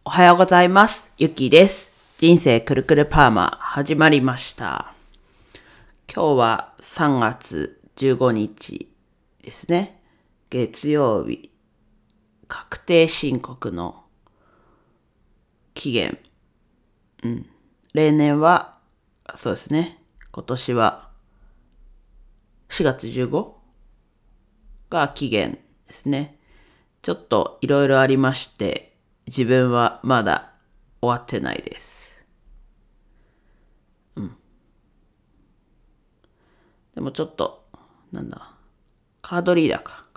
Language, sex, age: Japanese, female, 40-59